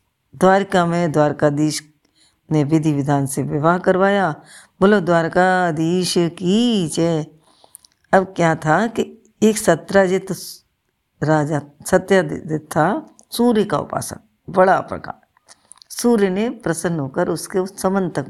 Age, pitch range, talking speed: 60-79, 155-205 Hz, 115 wpm